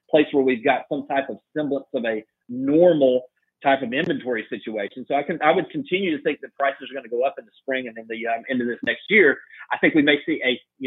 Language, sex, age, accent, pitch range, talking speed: English, male, 40-59, American, 135-185 Hz, 270 wpm